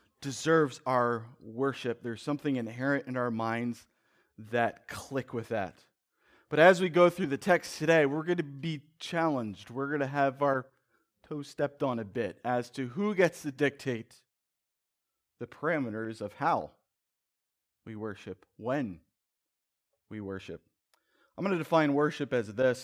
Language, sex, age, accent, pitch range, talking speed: English, male, 30-49, American, 115-165 Hz, 150 wpm